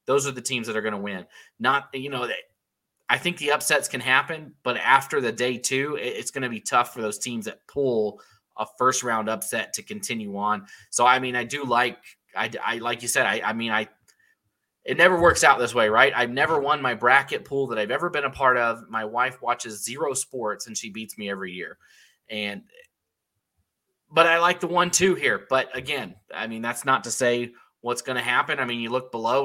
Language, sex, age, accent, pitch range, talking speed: English, male, 20-39, American, 115-145 Hz, 225 wpm